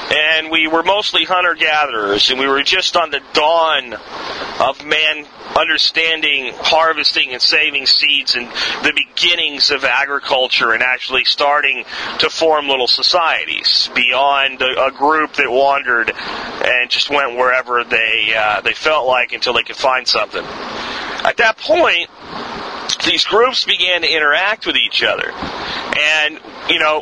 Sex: male